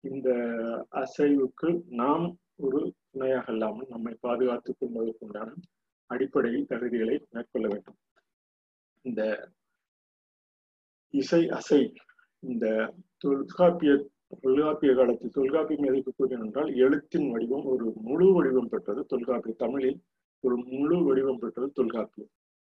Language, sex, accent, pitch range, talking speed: Tamil, male, native, 115-145 Hz, 95 wpm